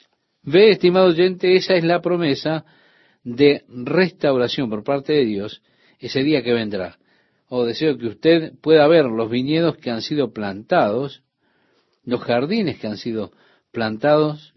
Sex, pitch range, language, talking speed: male, 115-155 Hz, Spanish, 145 wpm